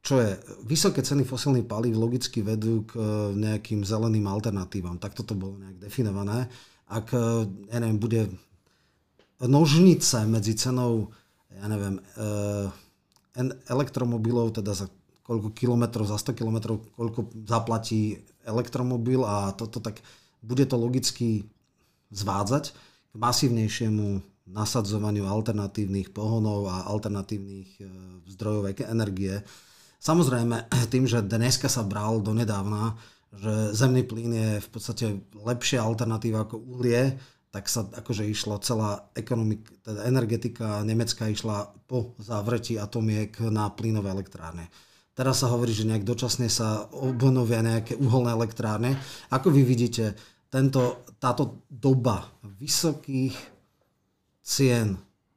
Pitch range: 105-125 Hz